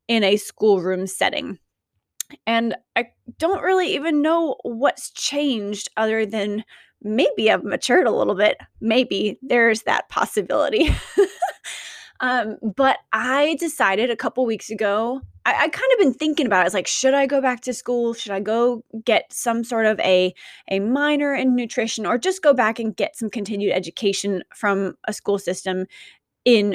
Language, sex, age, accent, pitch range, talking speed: English, female, 20-39, American, 200-265 Hz, 165 wpm